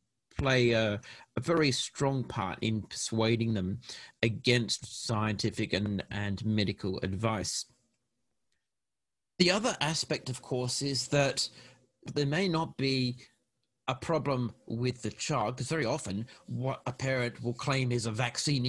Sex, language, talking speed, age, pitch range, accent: male, English, 135 wpm, 40-59, 115-140 Hz, British